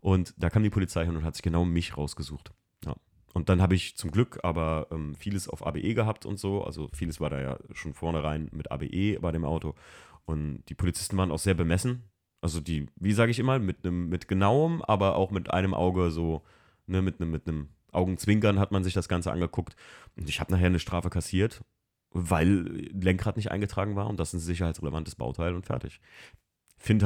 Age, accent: 30-49, German